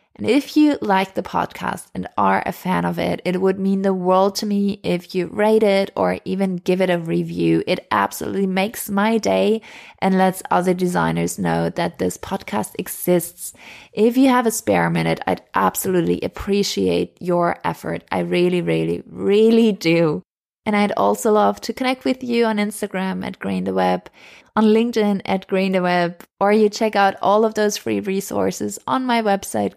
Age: 20-39